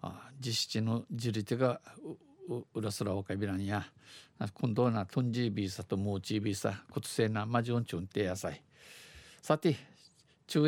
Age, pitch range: 50-69, 105-135 Hz